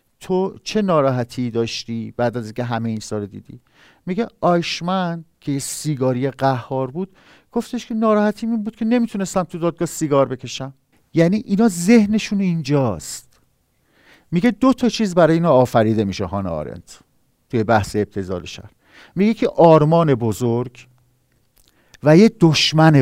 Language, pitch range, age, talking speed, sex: Persian, 120-170 Hz, 50-69, 135 wpm, male